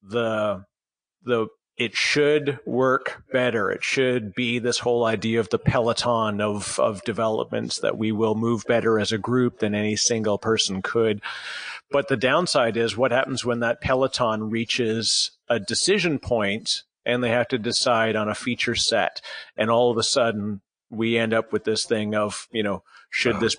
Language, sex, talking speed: English, male, 175 wpm